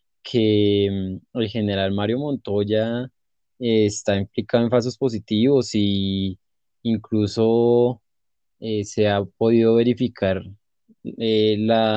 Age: 20-39